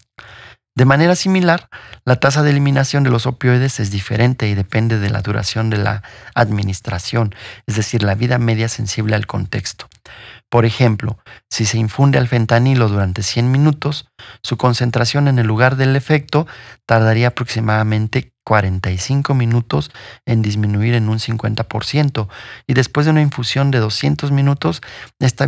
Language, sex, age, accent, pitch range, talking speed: Spanish, male, 40-59, Mexican, 110-130 Hz, 150 wpm